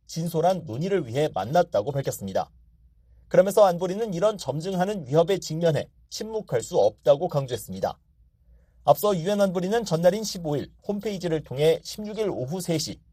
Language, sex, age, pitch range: Korean, male, 40-59, 150-200 Hz